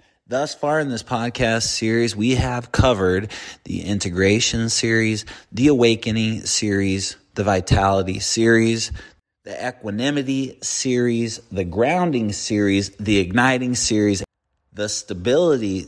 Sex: male